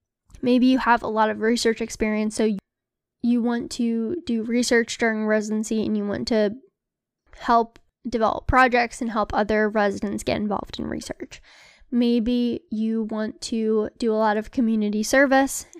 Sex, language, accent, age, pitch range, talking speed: female, English, American, 10-29, 215-240 Hz, 155 wpm